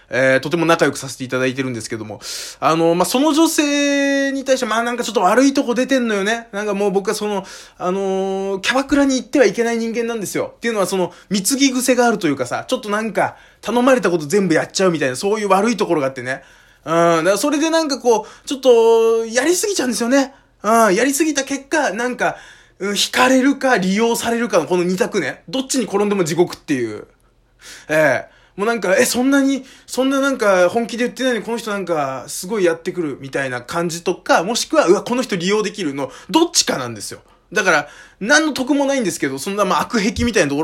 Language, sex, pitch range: Japanese, male, 170-255 Hz